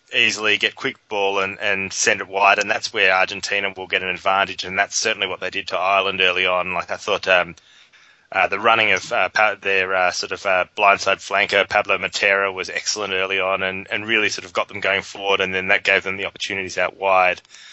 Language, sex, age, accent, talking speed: English, male, 20-39, Australian, 225 wpm